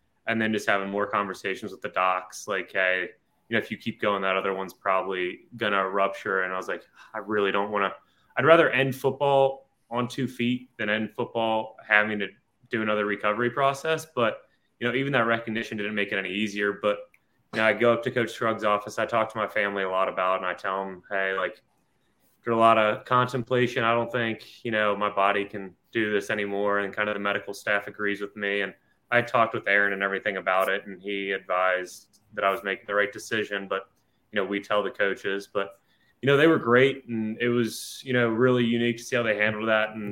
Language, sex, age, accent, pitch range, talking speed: English, male, 20-39, American, 100-115 Hz, 235 wpm